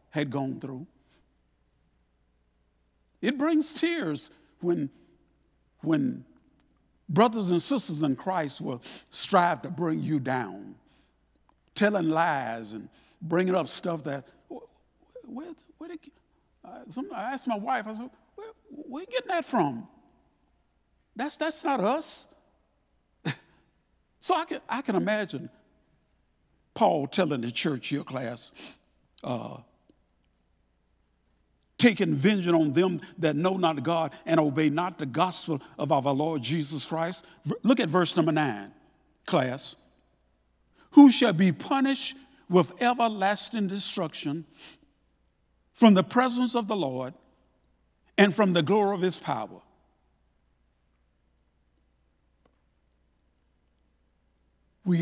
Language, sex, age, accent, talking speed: English, male, 60-79, American, 115 wpm